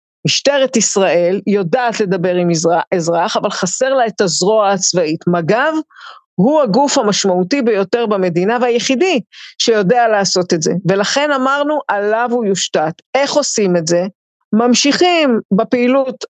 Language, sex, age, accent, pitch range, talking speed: Hebrew, female, 50-69, native, 190-240 Hz, 125 wpm